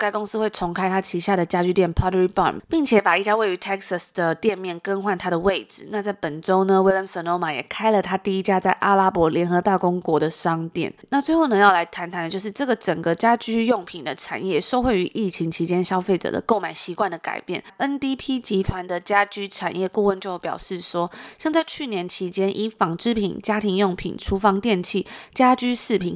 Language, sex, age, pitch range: Chinese, female, 20-39, 175-215 Hz